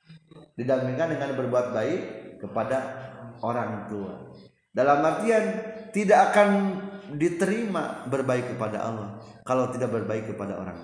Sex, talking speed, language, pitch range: male, 110 wpm, Indonesian, 110-150 Hz